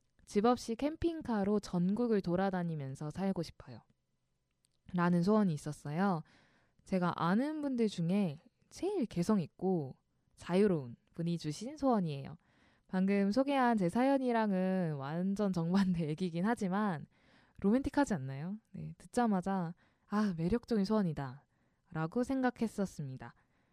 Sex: female